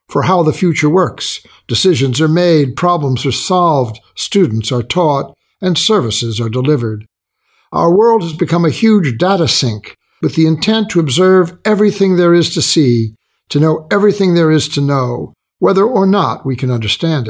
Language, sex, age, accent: English, male, 60-79, American